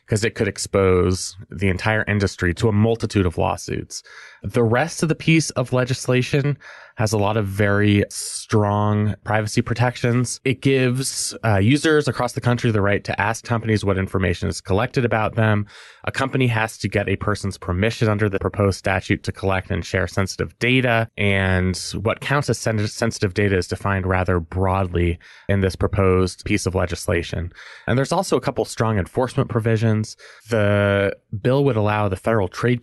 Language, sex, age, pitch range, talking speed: English, male, 20-39, 95-115 Hz, 170 wpm